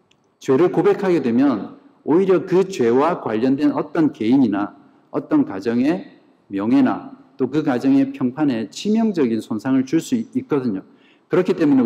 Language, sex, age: Korean, male, 50-69